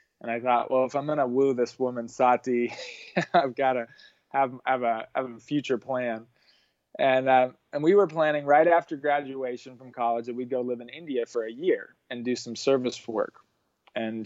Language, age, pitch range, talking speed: English, 20-39, 115-145 Hz, 205 wpm